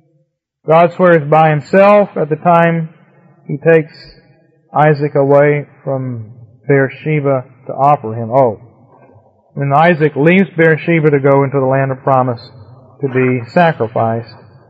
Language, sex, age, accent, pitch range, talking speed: English, male, 40-59, American, 130-160 Hz, 125 wpm